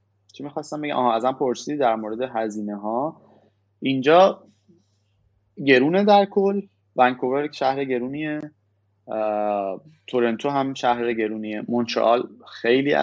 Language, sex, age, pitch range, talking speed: Persian, male, 20-39, 100-135 Hz, 105 wpm